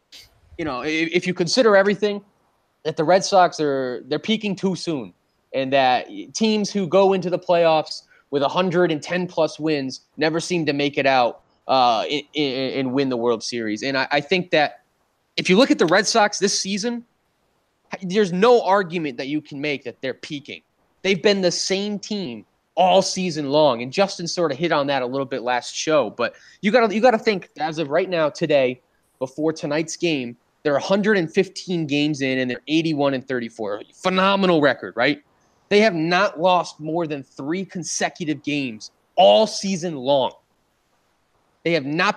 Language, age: English, 20-39